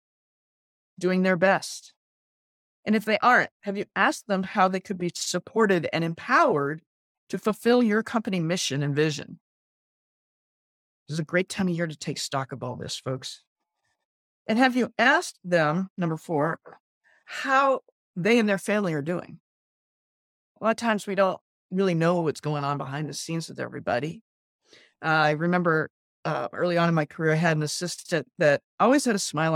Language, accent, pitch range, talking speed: English, American, 155-200 Hz, 175 wpm